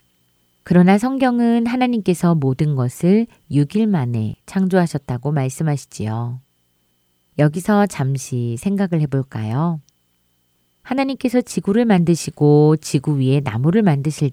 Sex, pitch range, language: female, 110-175 Hz, Korean